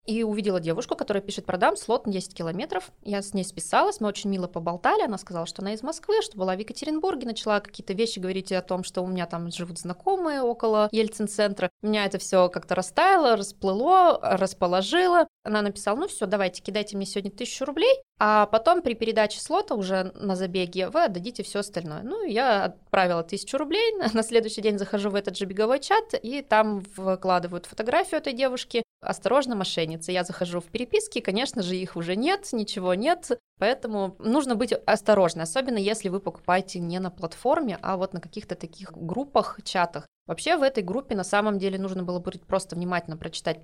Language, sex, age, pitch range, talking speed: Russian, female, 20-39, 175-220 Hz, 185 wpm